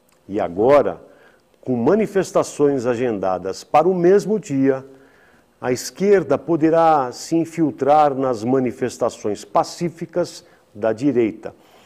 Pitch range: 120-160 Hz